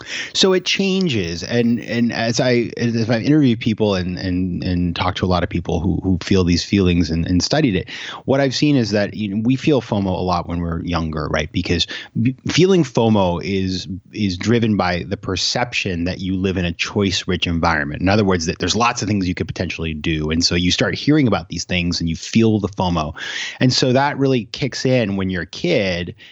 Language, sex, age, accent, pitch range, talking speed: English, male, 30-49, American, 90-120 Hz, 220 wpm